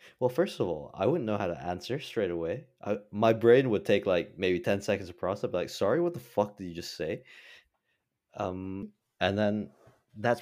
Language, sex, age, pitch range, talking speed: English, male, 30-49, 85-110 Hz, 215 wpm